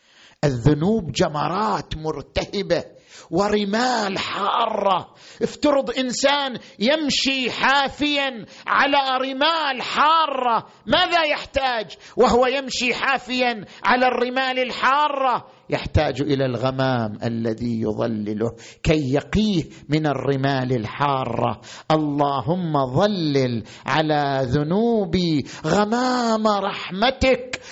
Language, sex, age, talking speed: Arabic, male, 50-69, 80 wpm